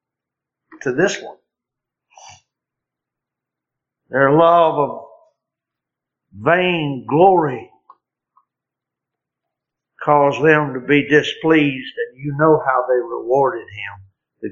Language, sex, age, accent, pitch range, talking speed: English, male, 60-79, American, 140-185 Hz, 85 wpm